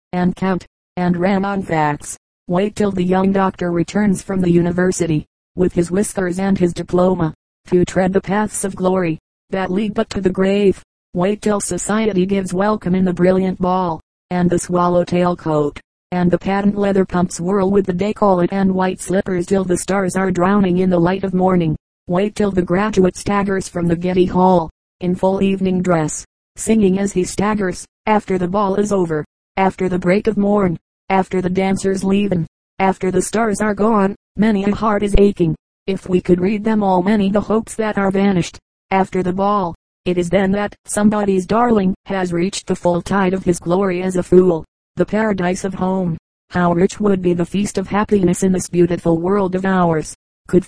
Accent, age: American, 40-59